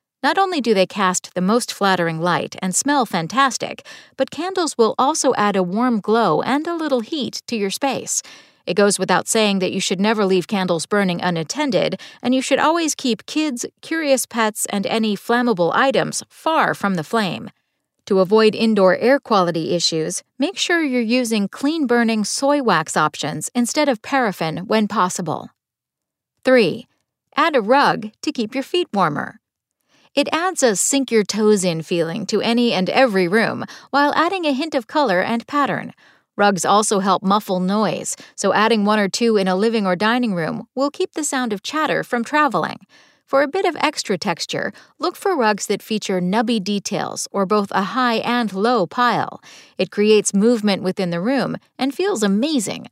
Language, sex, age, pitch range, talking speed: English, female, 40-59, 195-275 Hz, 180 wpm